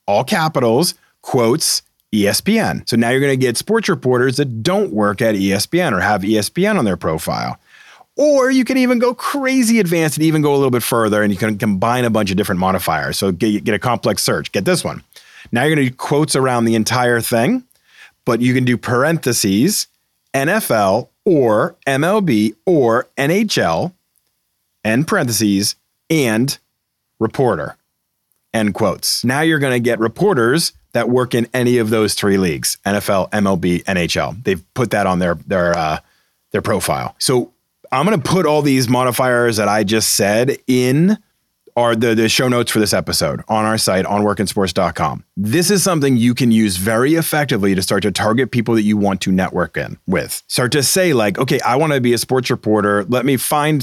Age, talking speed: 40-59, 185 wpm